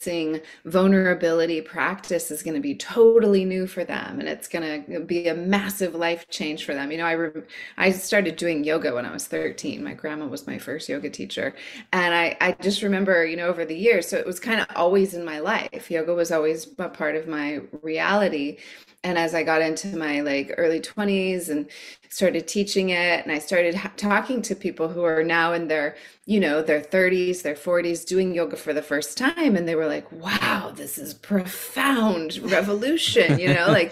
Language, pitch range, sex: English, 160-200 Hz, female